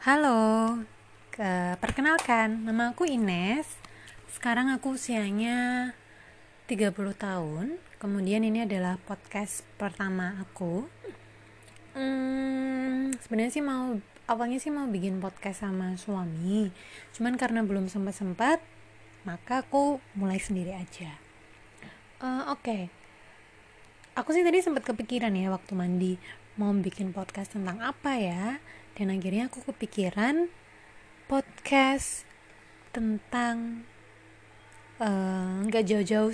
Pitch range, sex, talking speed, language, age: 190-255 Hz, female, 100 wpm, Indonesian, 20-39